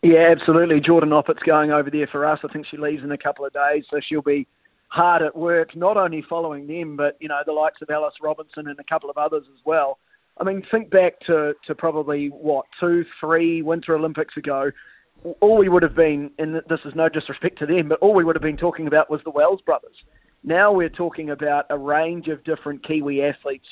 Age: 30-49